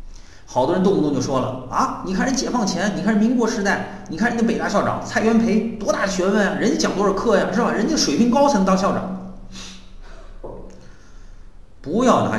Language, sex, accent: Chinese, male, native